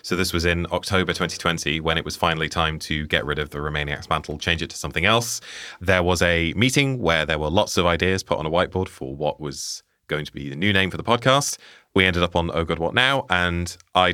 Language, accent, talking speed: English, British, 250 wpm